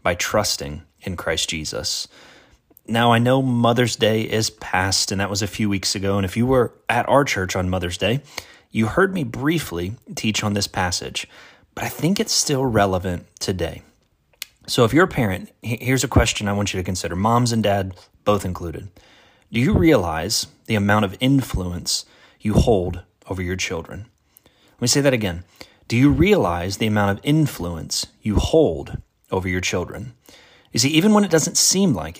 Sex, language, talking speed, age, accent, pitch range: male, English, 185 wpm, 30-49, American, 95-130 Hz